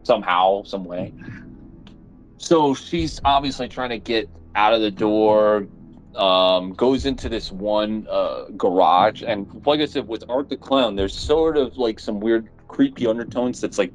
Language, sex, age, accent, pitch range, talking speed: English, male, 30-49, American, 95-130 Hz, 165 wpm